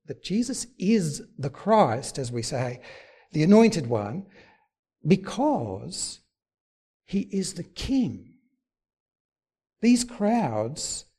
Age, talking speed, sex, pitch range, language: 60-79, 95 wpm, male, 135-200 Hz, English